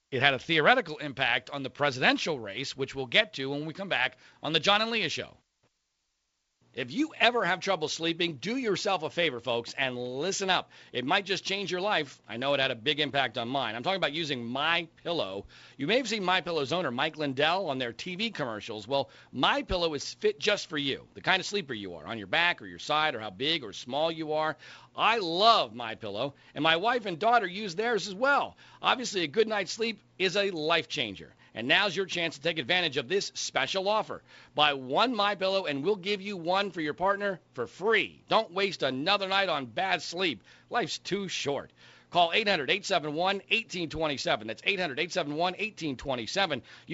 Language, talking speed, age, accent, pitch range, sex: English, 205 wpm, 40-59, American, 145-205 Hz, male